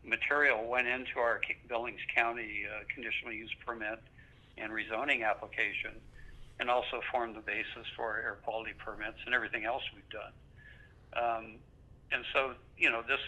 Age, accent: 60-79, American